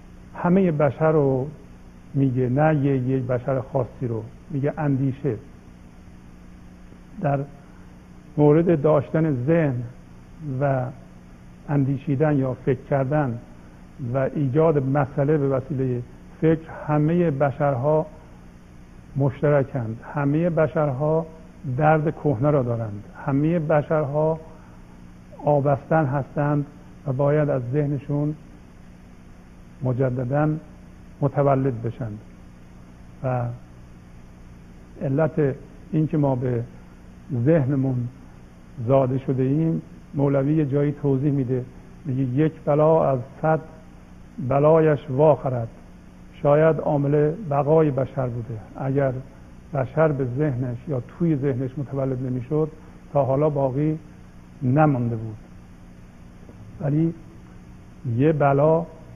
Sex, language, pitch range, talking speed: male, Persian, 110-150 Hz, 90 wpm